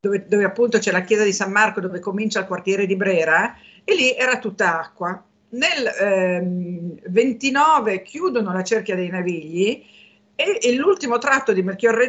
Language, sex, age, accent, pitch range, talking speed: Italian, female, 50-69, native, 190-235 Hz, 170 wpm